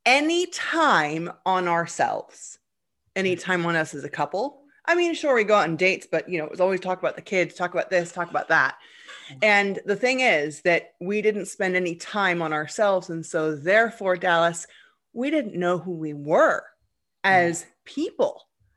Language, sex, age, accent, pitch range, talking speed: English, female, 30-49, American, 170-230 Hz, 190 wpm